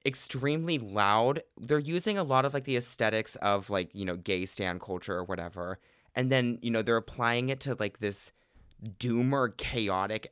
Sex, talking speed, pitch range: male, 185 wpm, 100-125 Hz